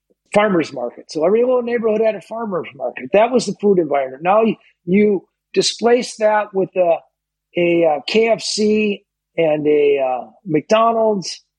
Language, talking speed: English, 145 wpm